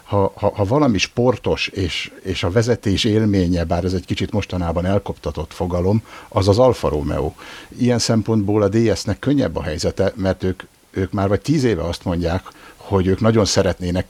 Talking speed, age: 175 wpm, 60-79